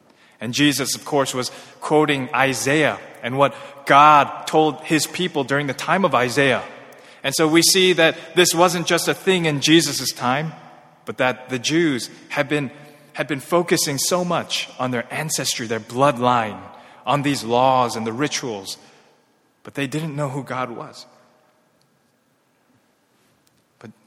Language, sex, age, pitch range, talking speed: English, male, 20-39, 125-155 Hz, 150 wpm